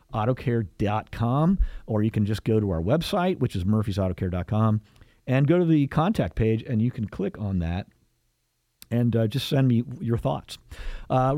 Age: 50-69